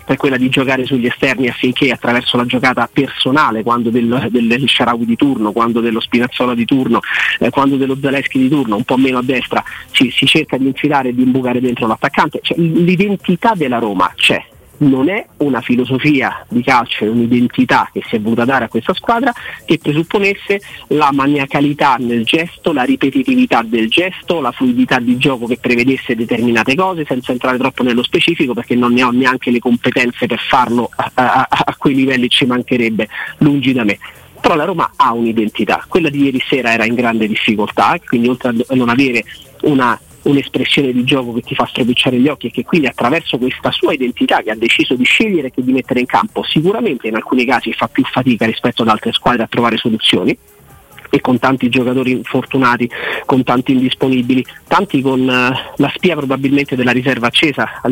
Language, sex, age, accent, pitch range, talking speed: Italian, male, 30-49, native, 120-140 Hz, 190 wpm